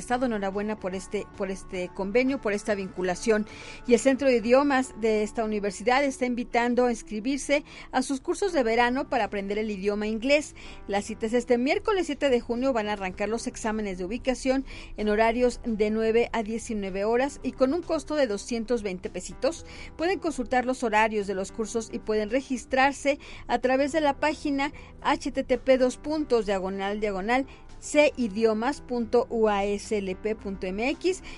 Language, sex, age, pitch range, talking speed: Spanish, female, 40-59, 215-260 Hz, 155 wpm